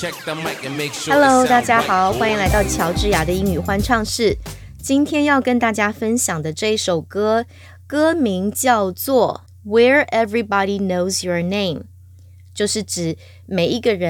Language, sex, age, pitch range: English, female, 20-39, 175-235 Hz